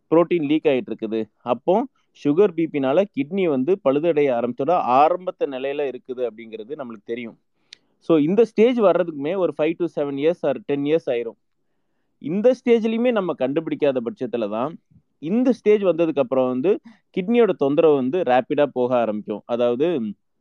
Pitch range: 130-180 Hz